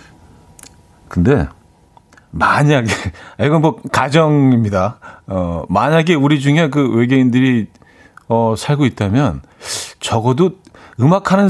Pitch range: 100-150 Hz